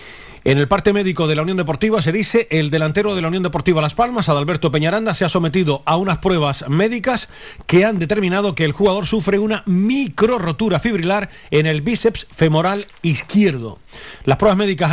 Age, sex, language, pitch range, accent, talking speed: 40-59, male, Spanish, 150-190 Hz, Spanish, 180 wpm